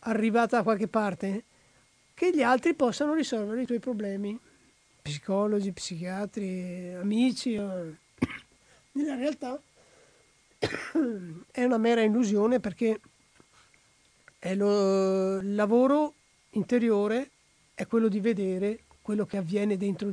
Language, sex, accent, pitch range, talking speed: Italian, male, native, 205-255 Hz, 100 wpm